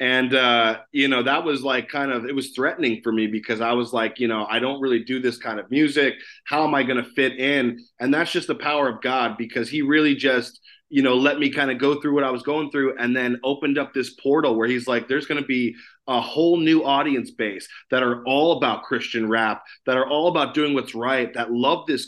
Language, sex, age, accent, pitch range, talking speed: English, male, 20-39, American, 125-145 Hz, 245 wpm